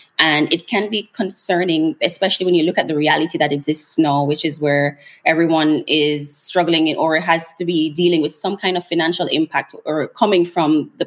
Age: 20-39